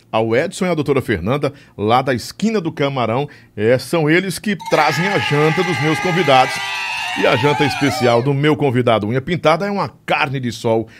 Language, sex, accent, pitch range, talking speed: Portuguese, male, Brazilian, 115-160 Hz, 190 wpm